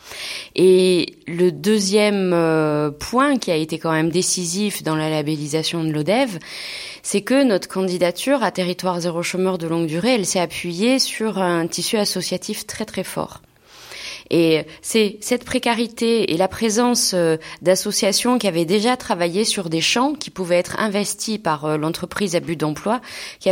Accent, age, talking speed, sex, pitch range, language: French, 20-39, 155 wpm, female, 160-205 Hz, French